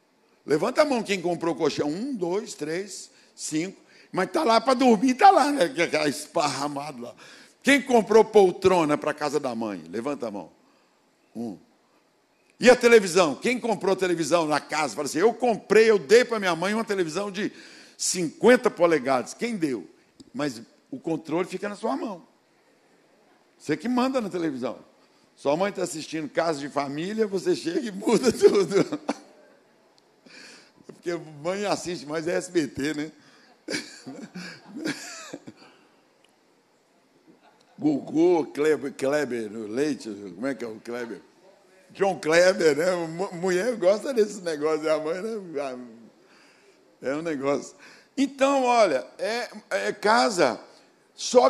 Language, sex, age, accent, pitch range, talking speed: Portuguese, male, 60-79, Brazilian, 160-250 Hz, 135 wpm